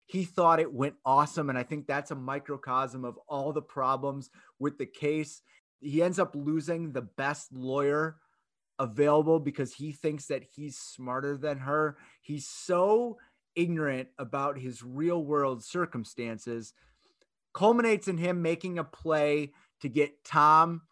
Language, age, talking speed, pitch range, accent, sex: English, 30-49, 145 wpm, 135-165 Hz, American, male